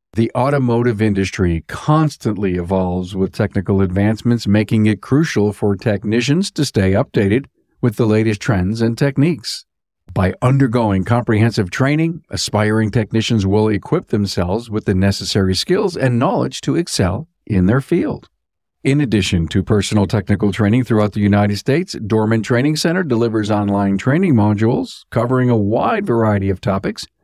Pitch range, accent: 100-130 Hz, American